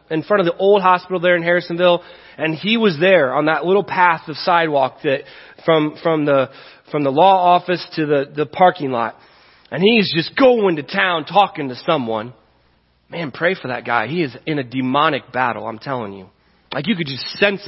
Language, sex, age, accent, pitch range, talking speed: English, male, 30-49, American, 140-180 Hz, 205 wpm